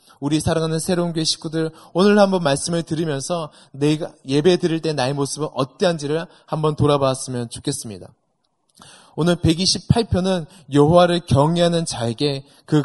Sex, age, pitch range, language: male, 20-39, 135-180 Hz, Korean